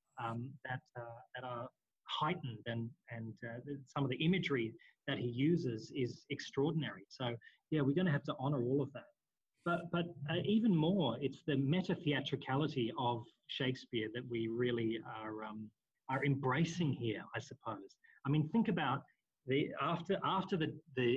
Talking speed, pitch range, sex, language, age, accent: 165 wpm, 120-150 Hz, male, English, 30-49, Australian